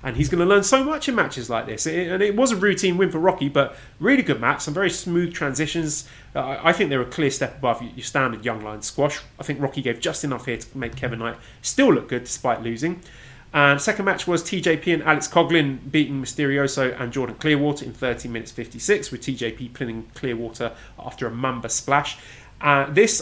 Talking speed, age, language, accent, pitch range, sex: 215 wpm, 30-49, English, British, 120-165 Hz, male